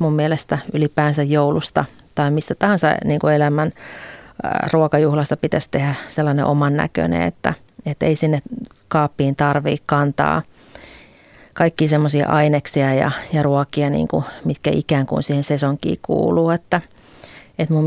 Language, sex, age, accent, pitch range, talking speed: Finnish, female, 30-49, native, 145-160 Hz, 105 wpm